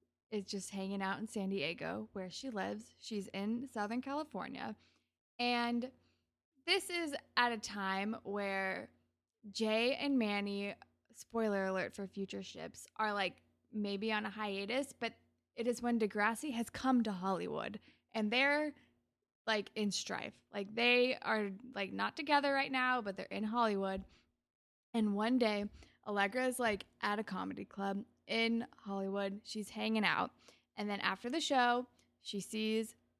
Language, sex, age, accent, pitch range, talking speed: English, female, 20-39, American, 200-255 Hz, 150 wpm